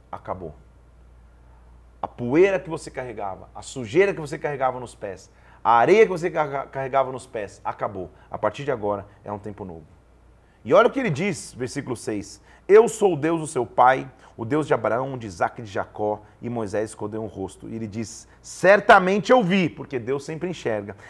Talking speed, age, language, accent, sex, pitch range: 195 wpm, 40-59, Portuguese, Brazilian, male, 105-160 Hz